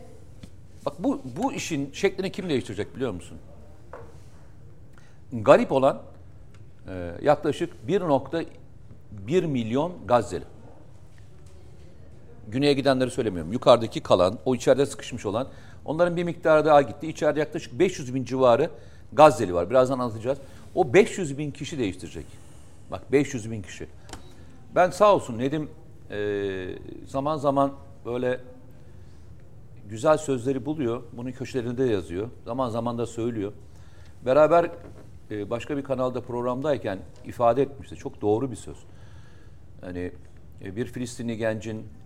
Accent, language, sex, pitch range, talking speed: native, Turkish, male, 105-135 Hz, 115 wpm